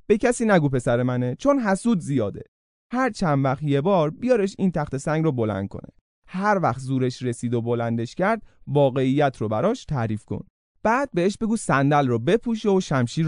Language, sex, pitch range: Persian, male, 120-205 Hz